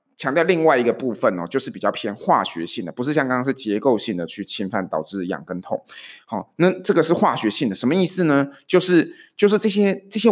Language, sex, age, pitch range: Chinese, male, 20-39, 105-145 Hz